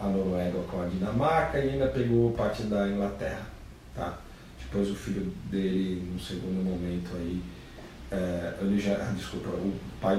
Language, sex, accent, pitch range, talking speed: Portuguese, male, Brazilian, 95-120 Hz, 155 wpm